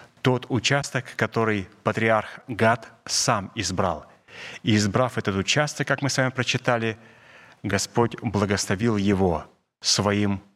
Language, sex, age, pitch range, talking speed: Russian, male, 30-49, 100-120 Hz, 115 wpm